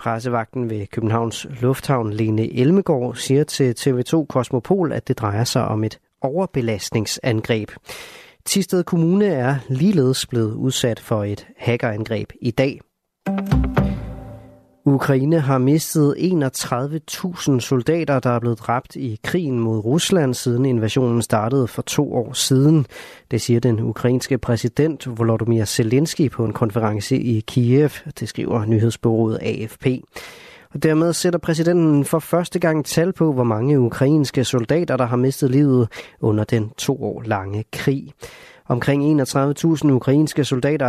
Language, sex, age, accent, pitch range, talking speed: Danish, male, 30-49, native, 115-150 Hz, 135 wpm